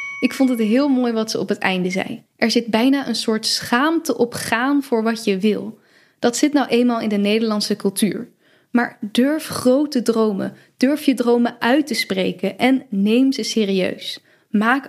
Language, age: Dutch, 10-29